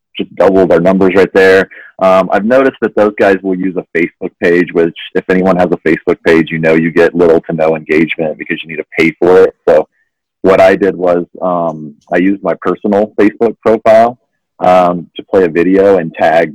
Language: English